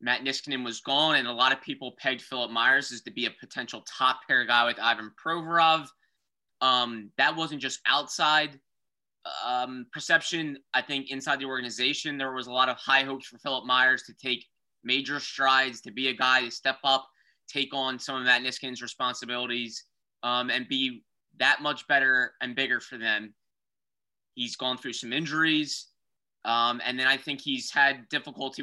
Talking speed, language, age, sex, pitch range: 180 wpm, English, 20-39, male, 125-140 Hz